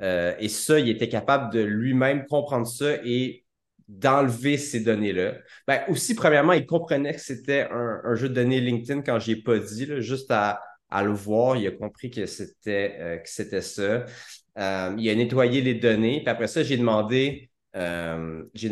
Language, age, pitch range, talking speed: French, 30-49, 95-120 Hz, 190 wpm